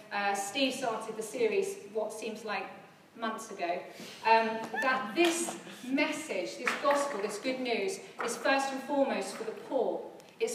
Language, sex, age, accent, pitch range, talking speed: English, female, 40-59, British, 225-275 Hz, 155 wpm